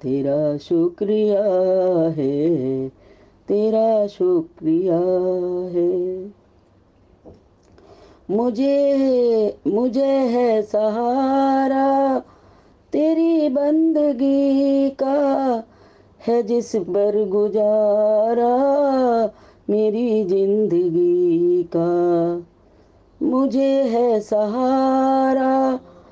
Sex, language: female, Hindi